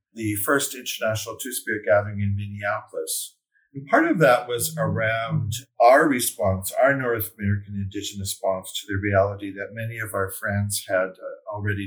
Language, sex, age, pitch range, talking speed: English, male, 50-69, 100-120 Hz, 155 wpm